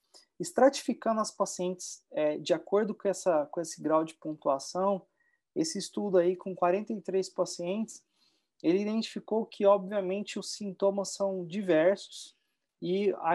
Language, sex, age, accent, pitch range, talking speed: English, male, 30-49, Brazilian, 175-205 Hz, 130 wpm